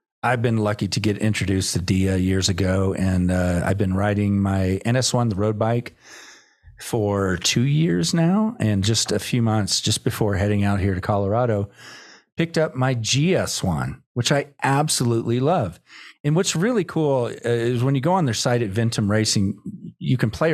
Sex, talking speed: male, 180 wpm